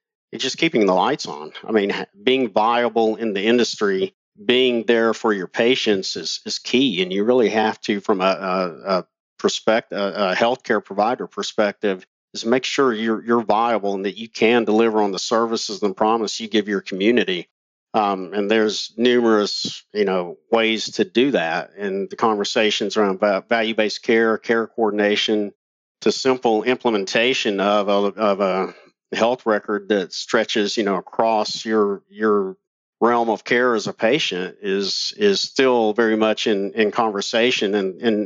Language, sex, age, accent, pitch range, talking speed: English, male, 50-69, American, 105-120 Hz, 165 wpm